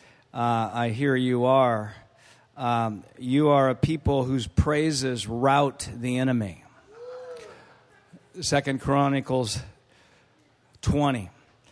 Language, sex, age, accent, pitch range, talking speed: English, male, 50-69, American, 120-145 Hz, 90 wpm